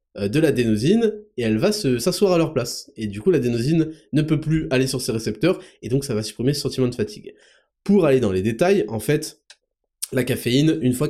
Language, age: French, 20-39